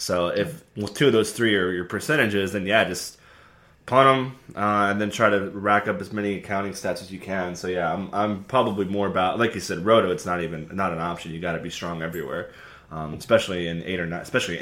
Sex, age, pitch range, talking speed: male, 20-39, 95-110 Hz, 240 wpm